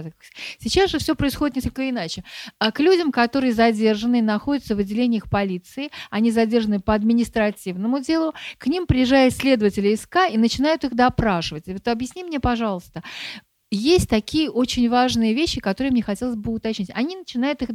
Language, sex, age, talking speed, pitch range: Russian, female, 50-69, 150 wpm, 215-275 Hz